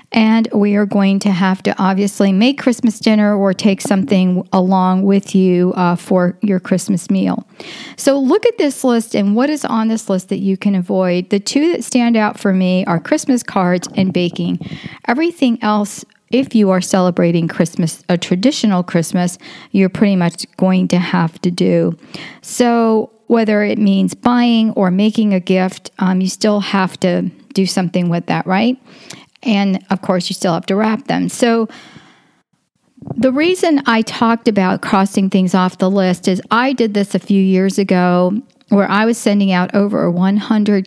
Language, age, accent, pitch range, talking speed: English, 40-59, American, 185-225 Hz, 180 wpm